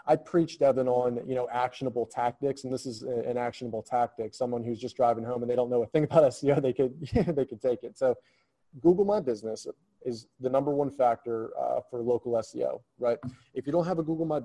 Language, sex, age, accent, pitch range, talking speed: English, male, 20-39, American, 120-145 Hz, 225 wpm